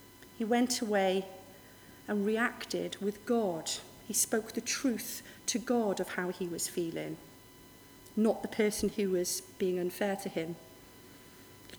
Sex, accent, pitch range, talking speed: female, British, 205-295 Hz, 145 wpm